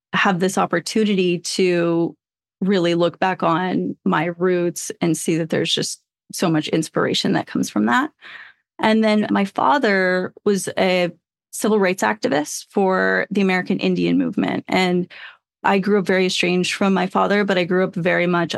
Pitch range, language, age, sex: 175-200 Hz, English, 30-49, female